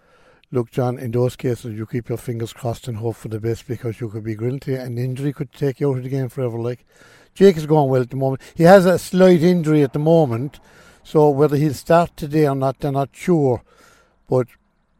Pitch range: 125-160 Hz